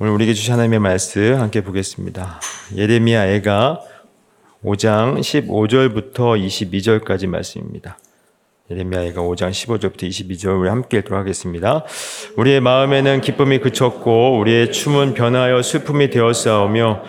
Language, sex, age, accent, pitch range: Korean, male, 30-49, native, 110-135 Hz